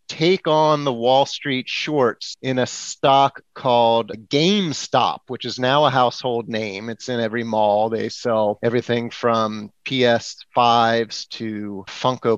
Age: 30-49